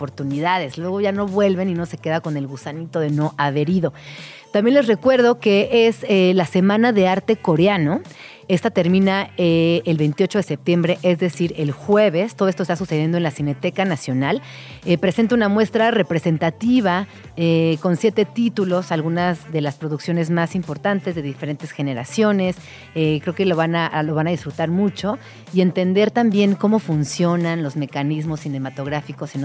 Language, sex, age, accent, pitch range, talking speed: Spanish, female, 40-59, Mexican, 150-190 Hz, 165 wpm